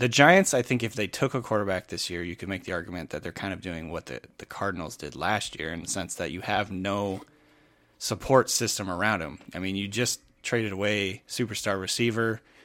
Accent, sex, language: American, male, English